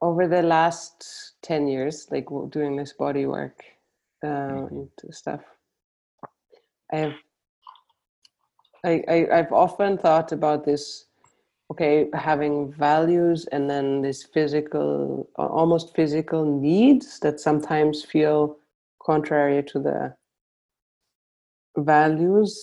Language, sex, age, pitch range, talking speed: English, female, 30-49, 140-165 Hz, 100 wpm